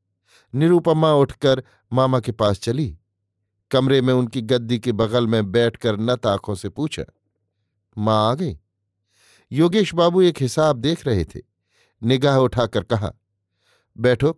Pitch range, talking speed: 105-135 Hz, 135 wpm